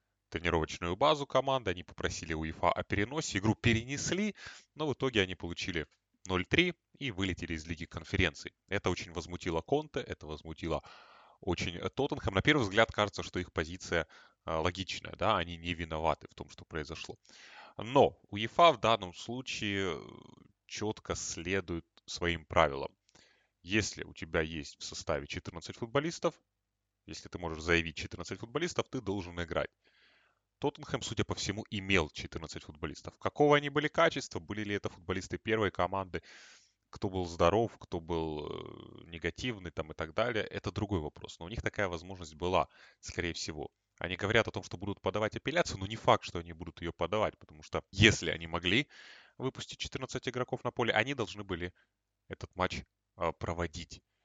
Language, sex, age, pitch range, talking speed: Russian, male, 20-39, 85-115 Hz, 155 wpm